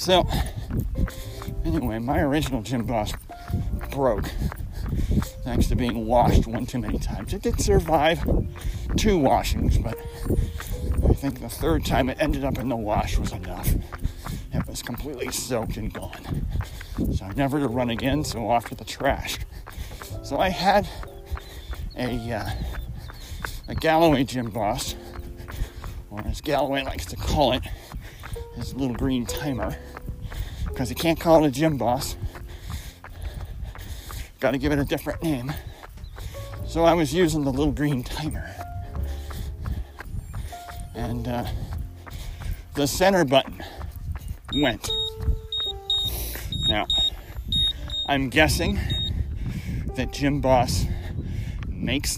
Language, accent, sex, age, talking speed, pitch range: English, American, male, 40-59, 125 wpm, 85-125 Hz